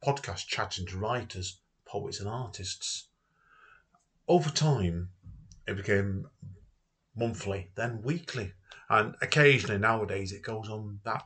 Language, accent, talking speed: English, British, 110 wpm